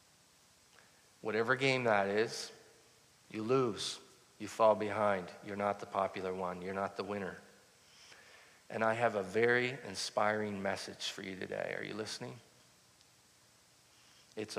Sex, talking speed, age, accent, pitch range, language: male, 130 wpm, 50-69, American, 100-110 Hz, English